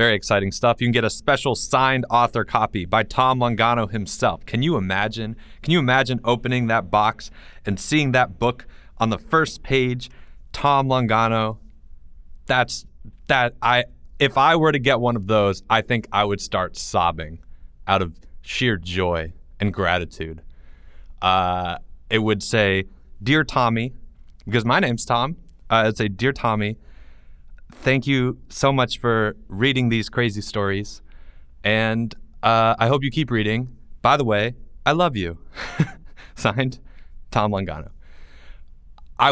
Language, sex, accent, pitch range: English, male, American, 85-120 Hz